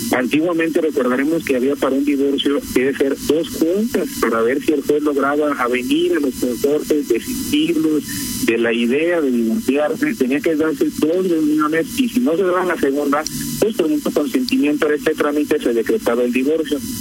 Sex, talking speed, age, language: male, 185 wpm, 50-69, Spanish